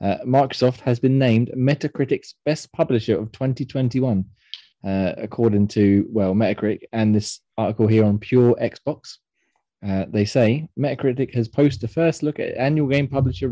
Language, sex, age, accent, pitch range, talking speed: English, male, 20-39, British, 105-130 Hz, 155 wpm